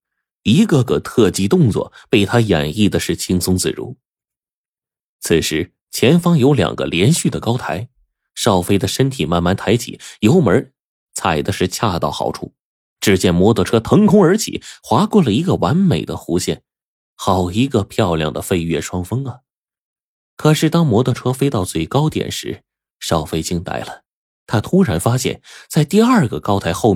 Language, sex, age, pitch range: Chinese, male, 20-39, 85-125 Hz